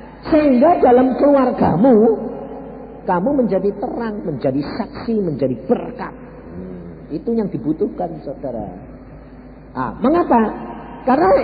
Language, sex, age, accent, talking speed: Indonesian, male, 50-69, native, 90 wpm